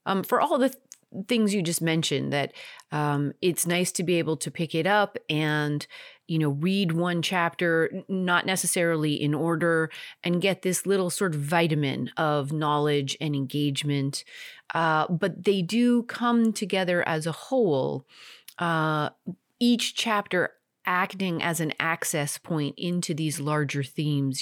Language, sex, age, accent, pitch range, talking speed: English, female, 30-49, American, 150-210 Hz, 150 wpm